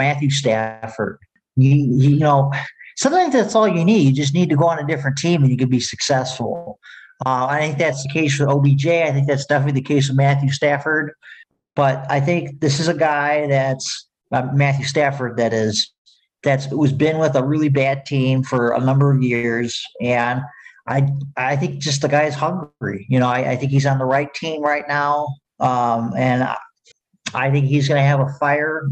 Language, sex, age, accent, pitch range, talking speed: English, male, 50-69, American, 130-150 Hz, 200 wpm